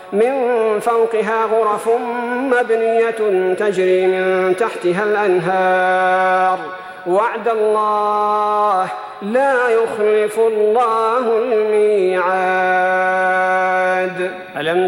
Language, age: Arabic, 40-59